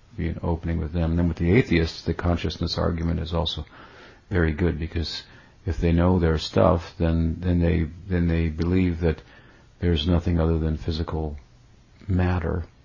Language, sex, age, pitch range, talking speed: English, male, 50-69, 85-100 Hz, 170 wpm